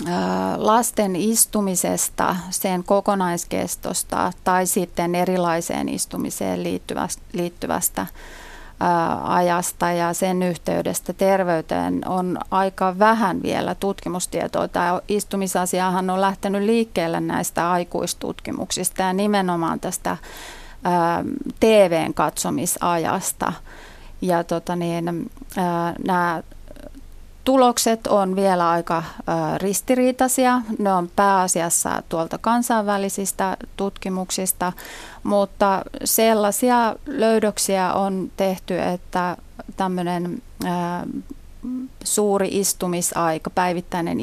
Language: Finnish